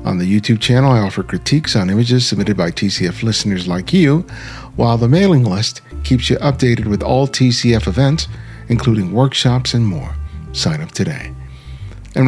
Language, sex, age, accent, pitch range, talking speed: English, male, 50-69, American, 105-130 Hz, 165 wpm